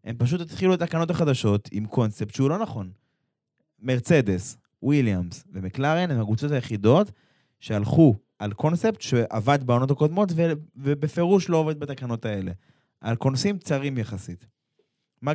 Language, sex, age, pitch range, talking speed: Hebrew, male, 20-39, 120-160 Hz, 135 wpm